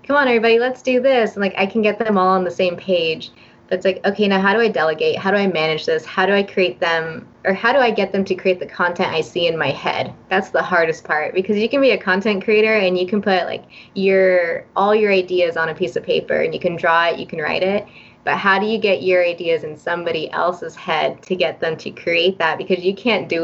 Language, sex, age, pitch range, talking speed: English, female, 20-39, 170-200 Hz, 270 wpm